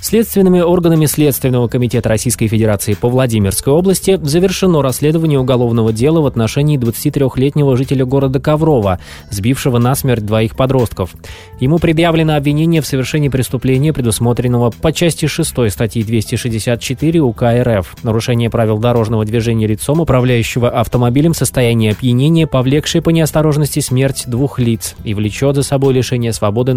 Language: Russian